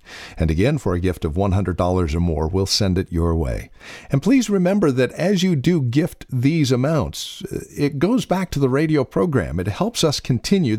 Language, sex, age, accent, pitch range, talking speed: English, male, 50-69, American, 100-145 Hz, 195 wpm